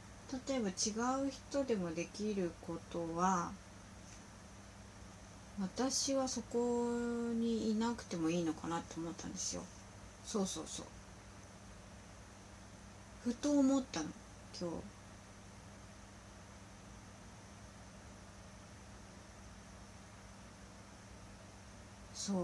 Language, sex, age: Japanese, female, 40-59